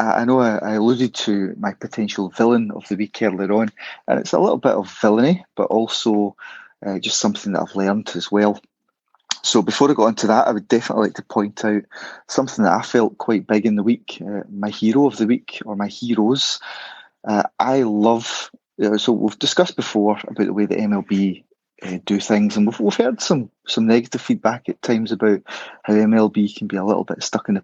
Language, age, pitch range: English, 30-49, 105-120 Hz